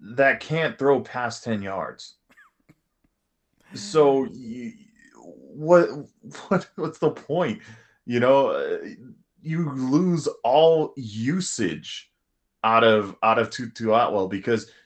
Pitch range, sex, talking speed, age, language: 120-175 Hz, male, 105 wpm, 20-39, English